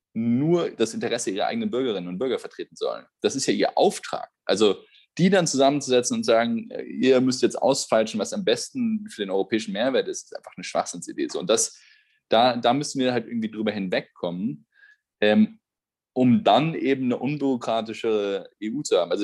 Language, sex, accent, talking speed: German, male, German, 175 wpm